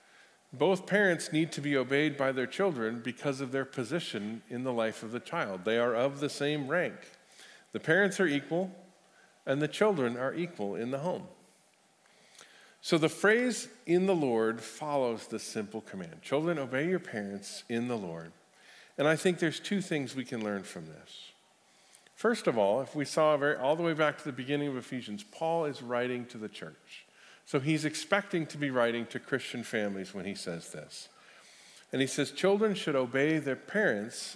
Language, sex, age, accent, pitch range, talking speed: English, male, 50-69, American, 125-170 Hz, 185 wpm